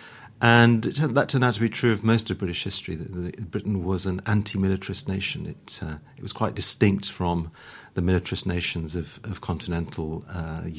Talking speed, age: 170 wpm, 40-59